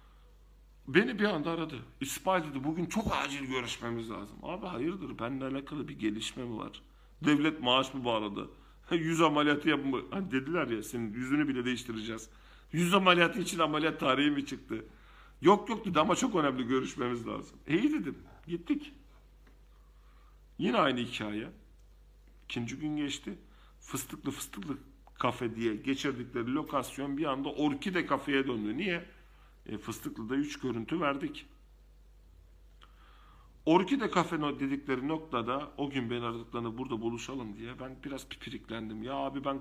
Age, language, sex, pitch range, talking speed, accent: 50-69, Turkish, male, 105-150 Hz, 140 wpm, native